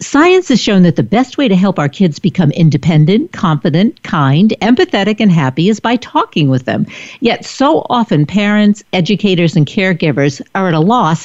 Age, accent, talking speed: 60-79, American, 180 wpm